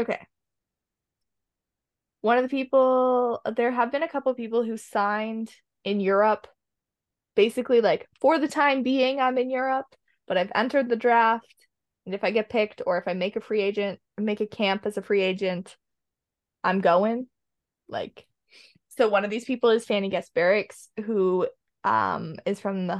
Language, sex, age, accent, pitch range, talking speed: English, female, 20-39, American, 190-240 Hz, 170 wpm